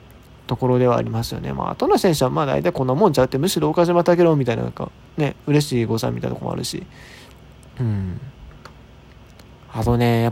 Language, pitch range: Japanese, 125-165 Hz